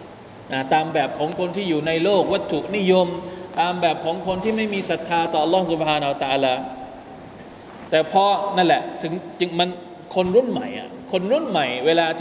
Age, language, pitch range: 20-39, Thai, 160-220 Hz